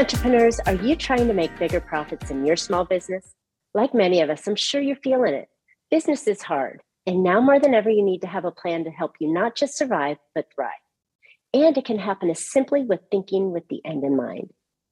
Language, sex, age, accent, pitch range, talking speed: English, female, 40-59, American, 165-245 Hz, 225 wpm